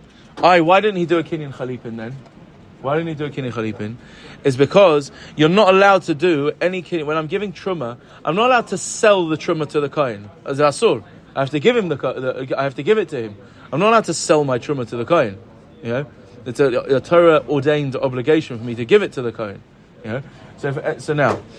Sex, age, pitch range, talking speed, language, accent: male, 30-49, 135-195 Hz, 225 wpm, English, British